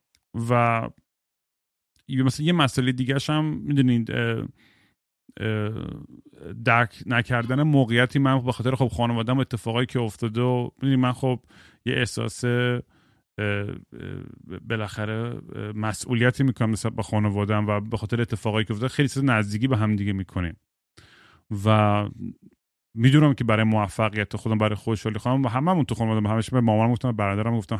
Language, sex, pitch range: Persian, male, 105-130 Hz